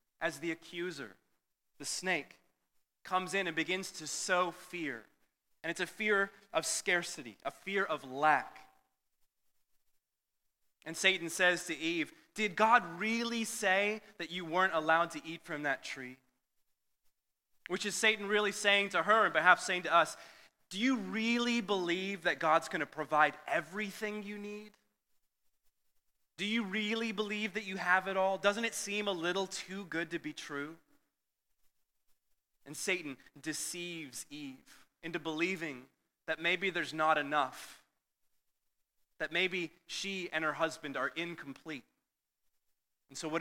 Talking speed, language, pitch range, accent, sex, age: 145 wpm, English, 150-200 Hz, American, male, 30-49